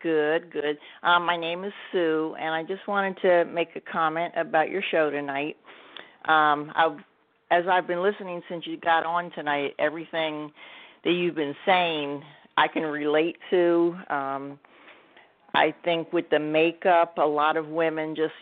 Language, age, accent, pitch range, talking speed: English, 50-69, American, 145-170 Hz, 165 wpm